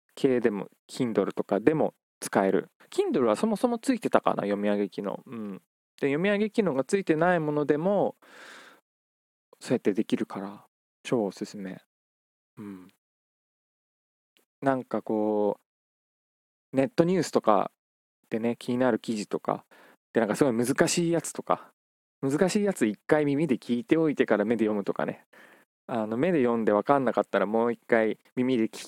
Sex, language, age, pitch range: male, Japanese, 20-39, 110-145 Hz